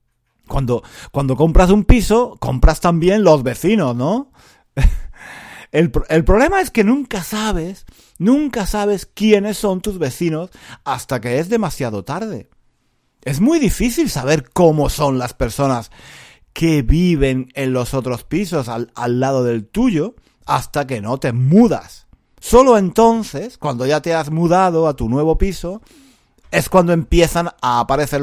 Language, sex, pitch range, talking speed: Spanish, male, 115-165 Hz, 145 wpm